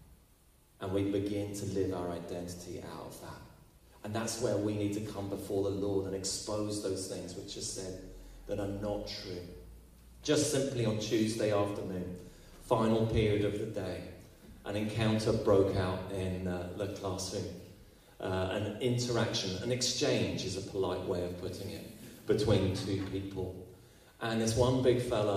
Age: 30-49